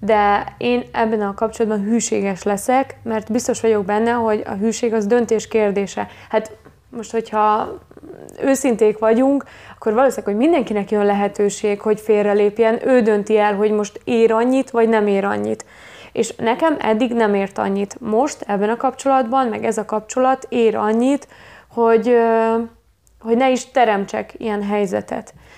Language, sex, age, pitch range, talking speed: Hungarian, female, 20-39, 205-235 Hz, 150 wpm